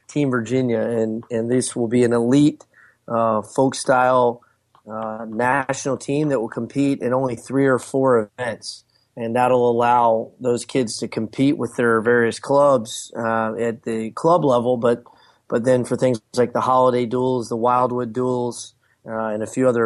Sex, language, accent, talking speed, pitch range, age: male, English, American, 170 wpm, 115-130 Hz, 30-49